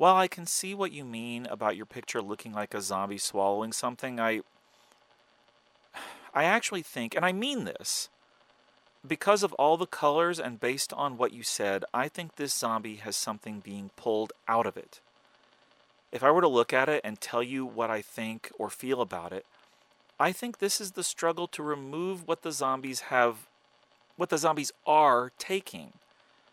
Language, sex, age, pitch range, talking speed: English, male, 40-59, 120-175 Hz, 180 wpm